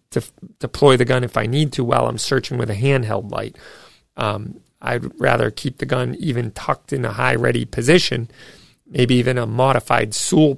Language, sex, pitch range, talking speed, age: English, male, 115-135 Hz, 185 wpm, 40-59